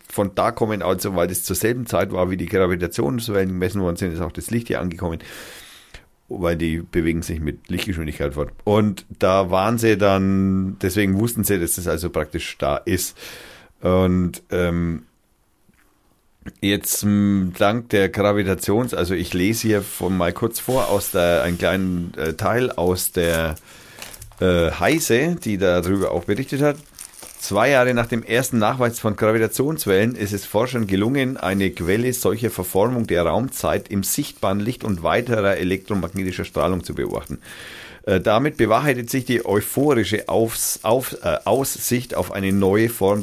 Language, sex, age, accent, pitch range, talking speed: German, male, 40-59, German, 90-115 Hz, 160 wpm